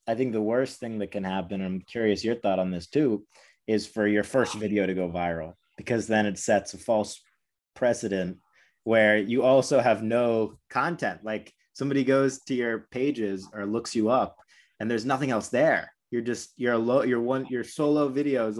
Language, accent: English, American